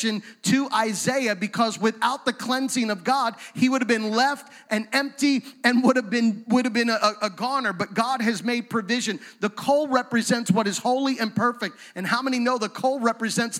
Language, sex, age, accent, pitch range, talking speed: English, male, 30-49, American, 215-260 Hz, 200 wpm